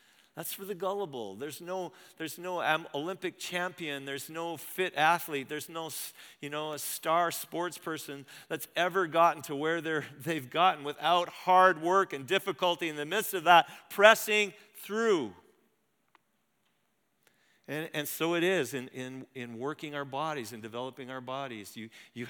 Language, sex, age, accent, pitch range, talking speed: English, male, 50-69, American, 130-165 Hz, 145 wpm